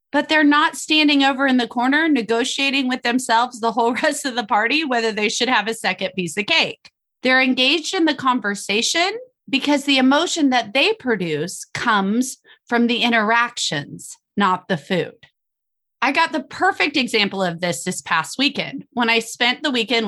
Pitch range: 200-295 Hz